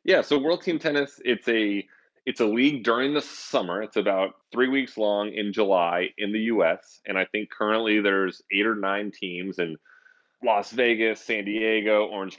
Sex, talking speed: male, 185 wpm